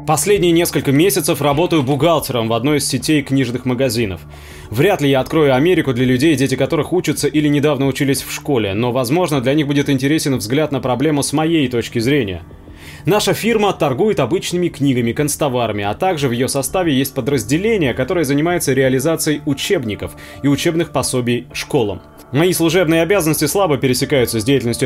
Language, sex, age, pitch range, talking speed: English, male, 20-39, 125-160 Hz, 160 wpm